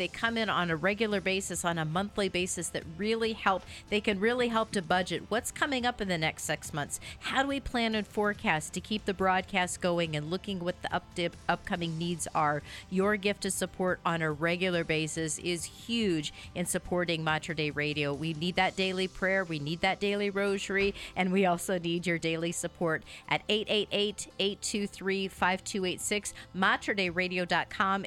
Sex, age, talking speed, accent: female, 40-59, 175 wpm, American